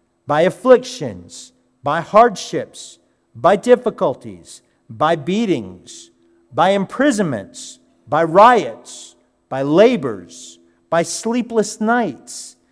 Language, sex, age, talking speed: English, male, 50-69, 80 wpm